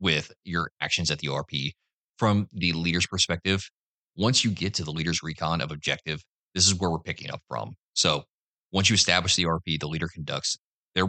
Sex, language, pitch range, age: male, English, 80-95 Hz, 30-49